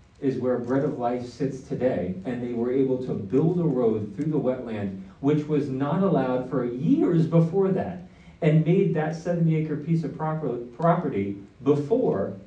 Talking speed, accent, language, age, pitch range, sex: 165 wpm, American, English, 40-59, 100-145 Hz, male